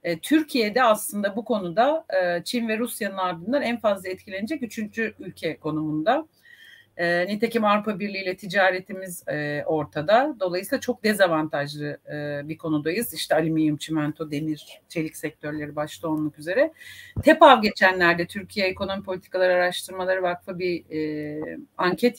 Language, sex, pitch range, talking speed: Turkish, female, 165-245 Hz, 115 wpm